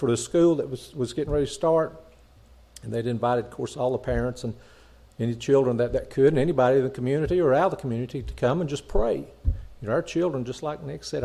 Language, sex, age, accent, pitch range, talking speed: English, male, 50-69, American, 120-160 Hz, 250 wpm